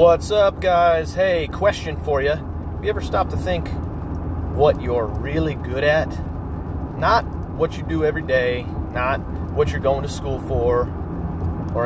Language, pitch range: English, 85-145 Hz